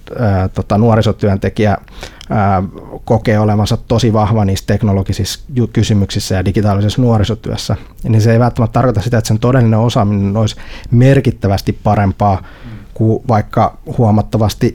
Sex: male